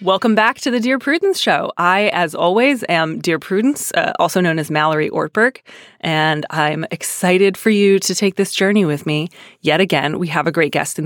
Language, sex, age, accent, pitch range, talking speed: English, female, 30-49, American, 155-190 Hz, 205 wpm